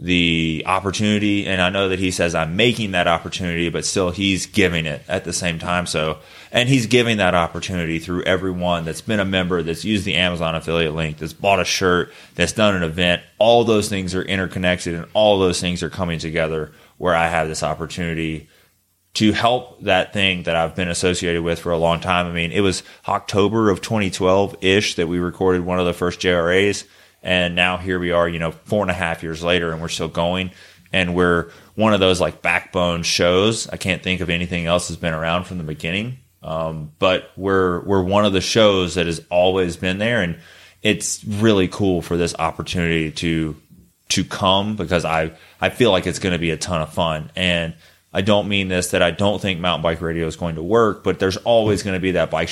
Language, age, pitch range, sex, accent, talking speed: English, 20-39, 85-95 Hz, male, American, 215 wpm